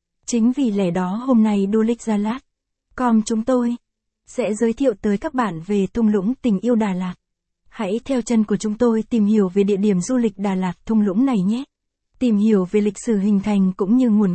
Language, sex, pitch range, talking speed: Vietnamese, female, 205-235 Hz, 215 wpm